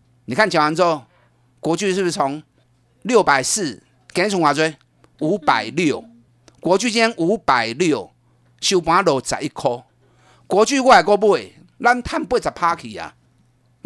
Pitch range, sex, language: 140-225 Hz, male, Chinese